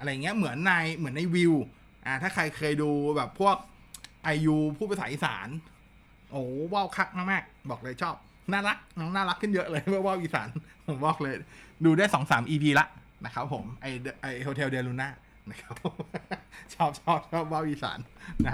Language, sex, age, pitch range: Thai, male, 20-39, 140-180 Hz